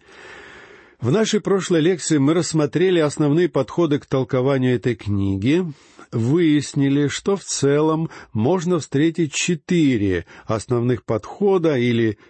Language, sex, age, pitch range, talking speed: Russian, male, 50-69, 120-175 Hz, 105 wpm